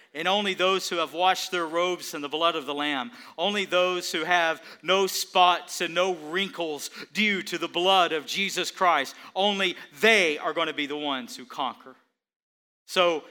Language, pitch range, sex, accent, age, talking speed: English, 135-190 Hz, male, American, 40-59, 185 wpm